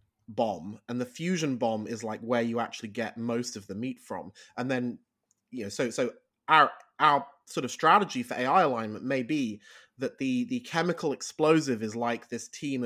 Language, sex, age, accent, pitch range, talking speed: English, male, 20-39, British, 115-150 Hz, 190 wpm